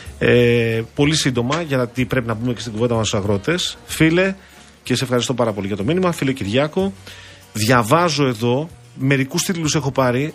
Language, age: Greek, 40-59